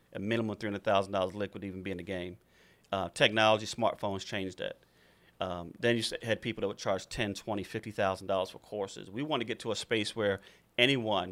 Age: 40-59